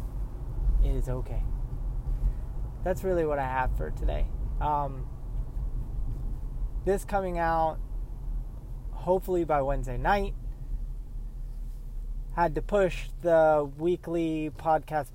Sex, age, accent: male, 20-39, American